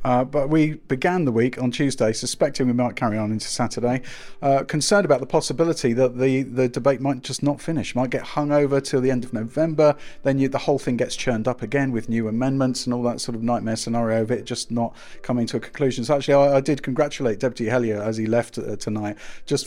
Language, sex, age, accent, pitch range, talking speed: English, male, 40-59, British, 115-135 Hz, 235 wpm